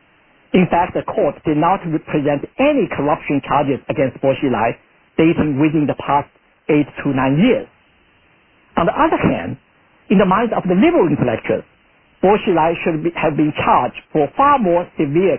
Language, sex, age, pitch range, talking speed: English, male, 50-69, 150-205 Hz, 160 wpm